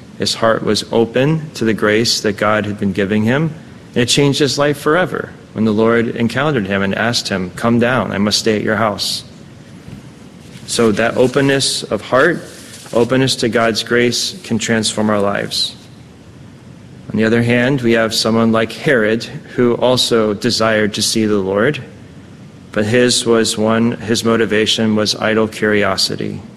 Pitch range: 110-120 Hz